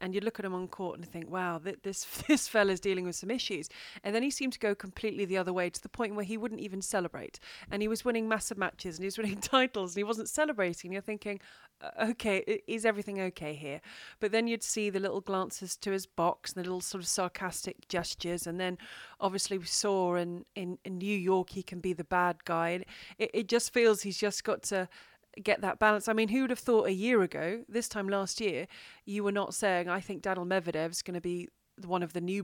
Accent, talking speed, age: British, 240 wpm, 30-49